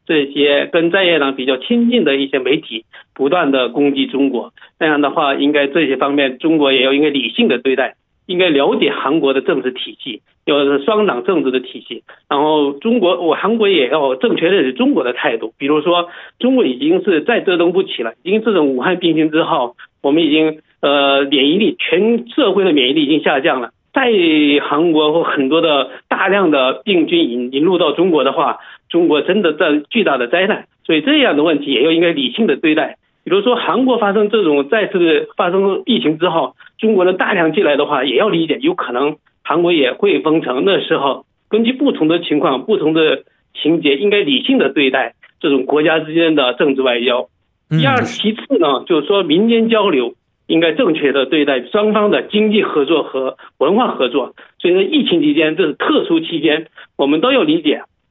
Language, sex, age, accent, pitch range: Korean, male, 50-69, Chinese, 145-230 Hz